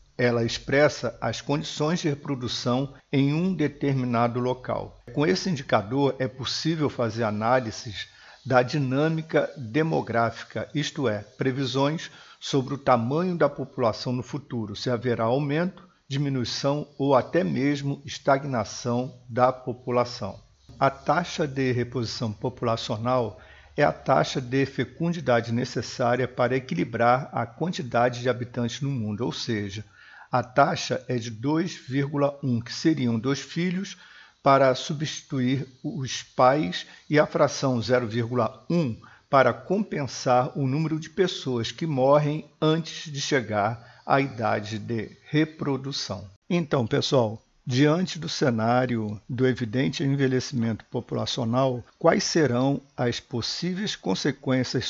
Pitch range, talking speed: 120-145 Hz, 115 wpm